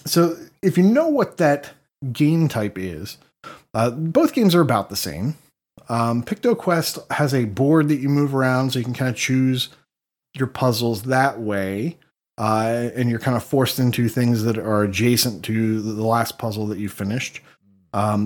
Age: 30-49